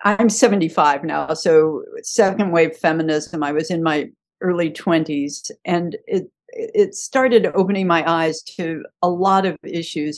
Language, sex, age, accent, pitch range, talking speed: English, female, 50-69, American, 160-210 Hz, 145 wpm